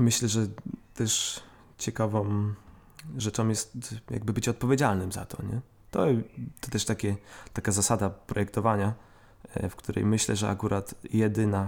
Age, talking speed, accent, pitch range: 20-39, 120 wpm, native, 105-130 Hz